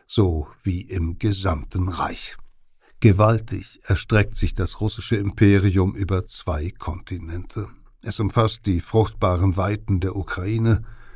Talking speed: 115 wpm